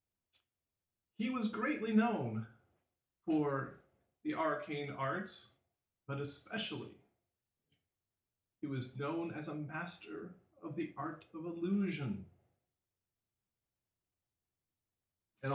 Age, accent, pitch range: 40-59, American, 115-160 Hz